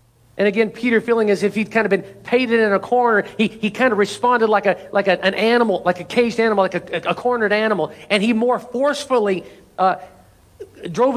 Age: 50-69